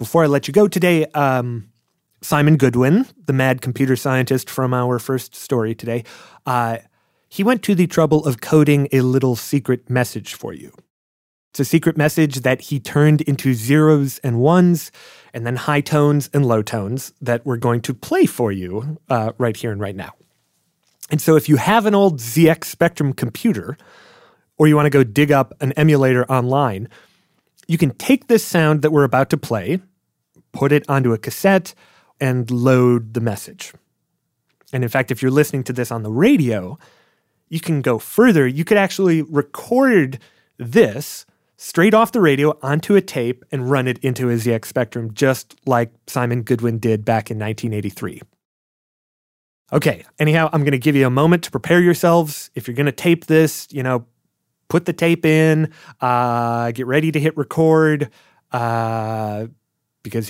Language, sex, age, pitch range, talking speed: English, male, 30-49, 120-155 Hz, 175 wpm